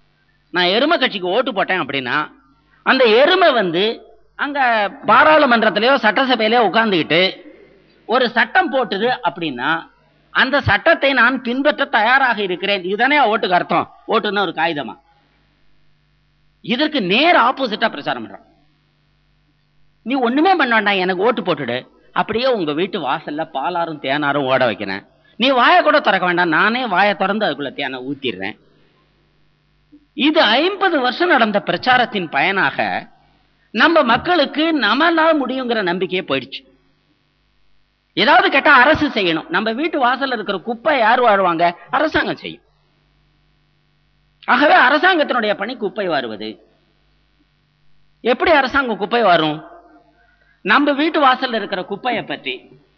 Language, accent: Tamil, native